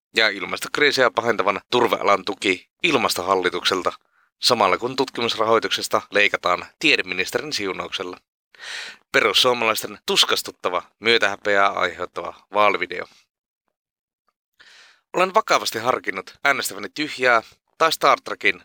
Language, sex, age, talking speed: Finnish, male, 30-49, 80 wpm